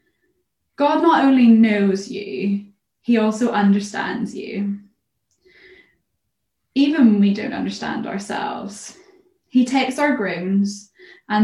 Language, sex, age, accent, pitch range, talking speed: English, female, 10-29, British, 200-230 Hz, 105 wpm